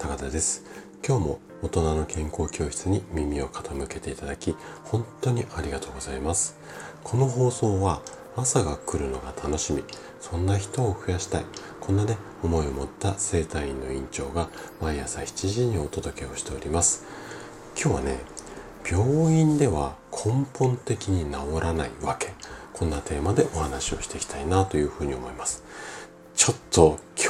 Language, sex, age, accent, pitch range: Japanese, male, 40-59, native, 75-115 Hz